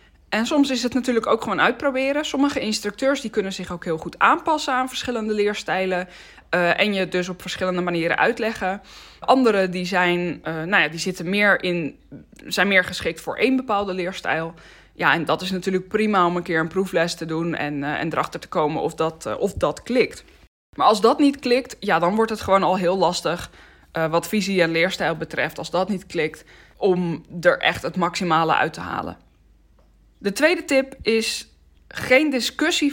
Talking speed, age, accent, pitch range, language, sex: 190 wpm, 20-39, Dutch, 175-230 Hz, Dutch, female